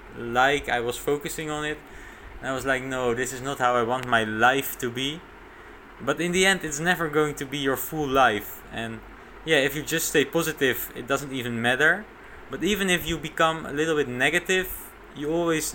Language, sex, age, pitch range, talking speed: English, male, 20-39, 125-155 Hz, 205 wpm